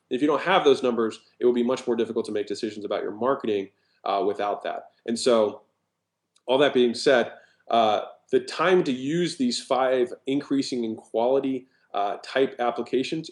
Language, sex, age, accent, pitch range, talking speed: English, male, 20-39, American, 115-140 Hz, 180 wpm